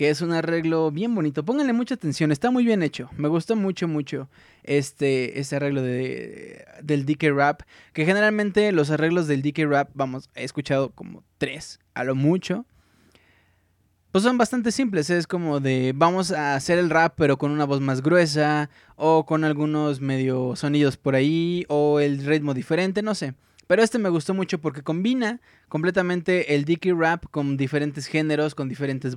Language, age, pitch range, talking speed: Spanish, 20-39, 140-190 Hz, 175 wpm